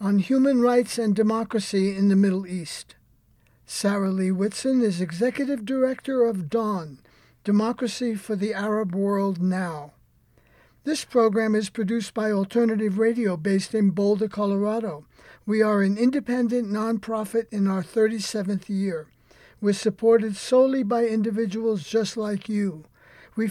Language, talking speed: English, 135 wpm